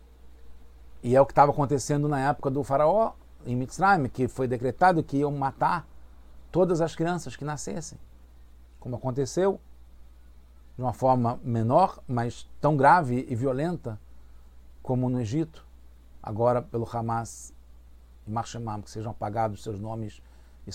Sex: male